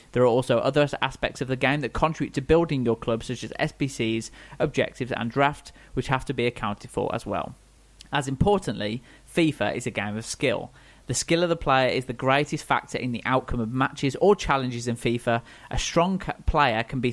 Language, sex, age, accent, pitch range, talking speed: English, male, 30-49, British, 115-140 Hz, 205 wpm